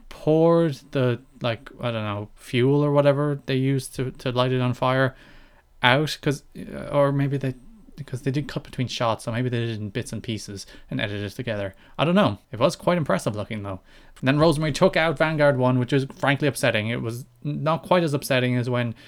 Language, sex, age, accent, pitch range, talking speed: English, male, 20-39, Irish, 115-145 Hz, 215 wpm